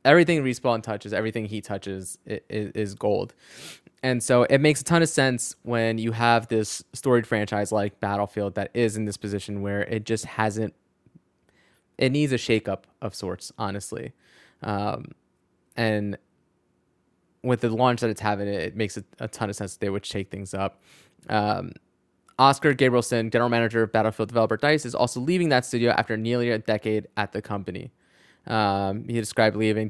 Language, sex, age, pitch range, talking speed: English, male, 20-39, 105-125 Hz, 175 wpm